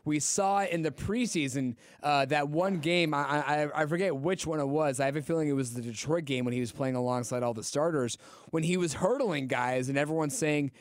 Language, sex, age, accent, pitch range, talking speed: English, male, 30-49, American, 140-180 Hz, 235 wpm